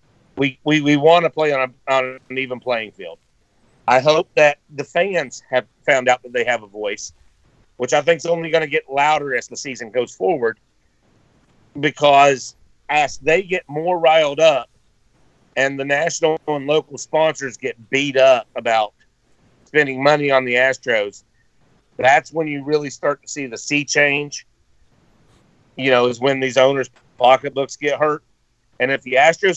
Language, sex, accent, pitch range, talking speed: English, male, American, 130-155 Hz, 175 wpm